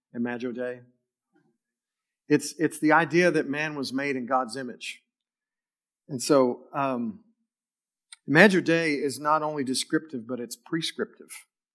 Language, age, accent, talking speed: English, 50-69, American, 130 wpm